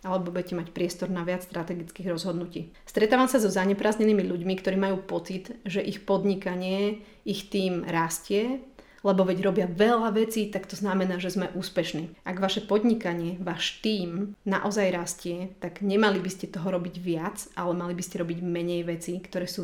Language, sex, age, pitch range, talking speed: Slovak, female, 30-49, 180-205 Hz, 170 wpm